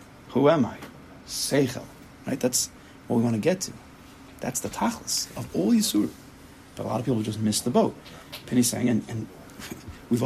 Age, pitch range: 40-59, 115-145 Hz